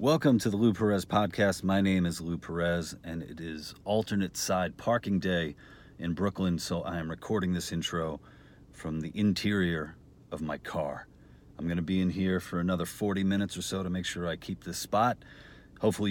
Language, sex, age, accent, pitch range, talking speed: English, male, 40-59, American, 85-105 Hz, 195 wpm